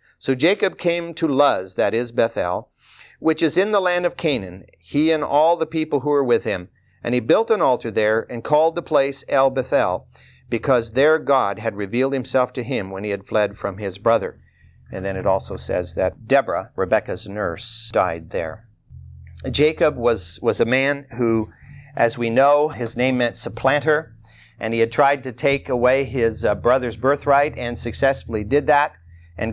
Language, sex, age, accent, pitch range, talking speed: English, male, 50-69, American, 115-160 Hz, 185 wpm